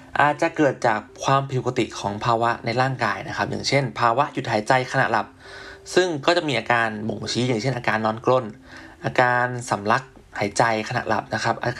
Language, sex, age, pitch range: Thai, male, 20-39, 110-135 Hz